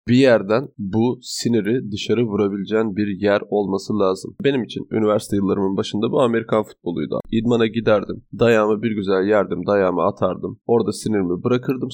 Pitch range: 100-115 Hz